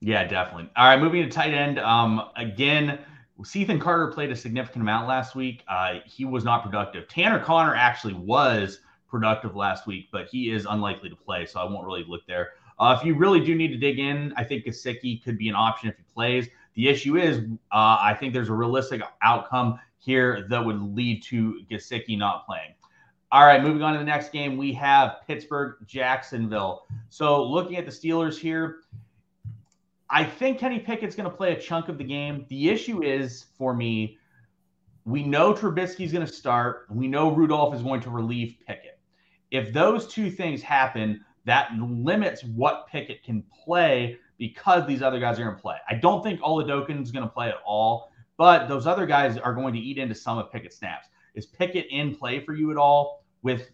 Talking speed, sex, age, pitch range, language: 195 wpm, male, 30-49, 110-150 Hz, English